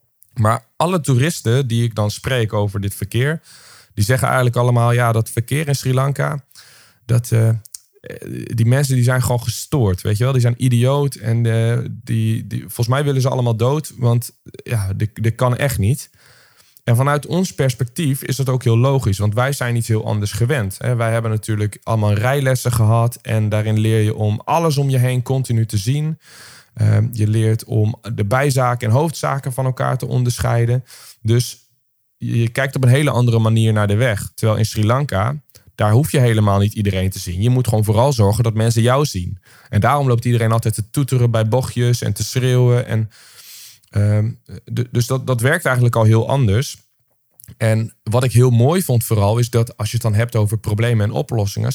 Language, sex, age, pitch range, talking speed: Dutch, male, 20-39, 110-130 Hz, 195 wpm